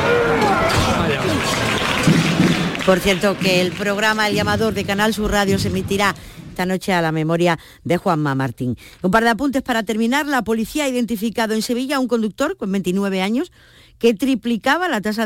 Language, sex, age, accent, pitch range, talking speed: Spanish, female, 50-69, Spanish, 175-230 Hz, 170 wpm